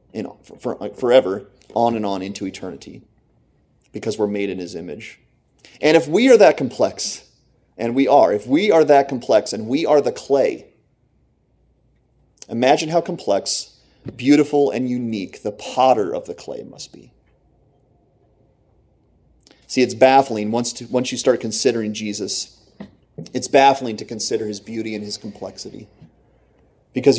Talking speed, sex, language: 150 wpm, male, English